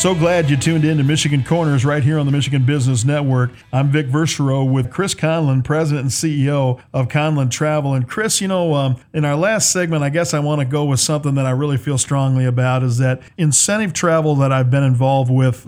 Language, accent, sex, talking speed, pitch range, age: English, American, male, 225 wpm, 130-150 Hz, 50-69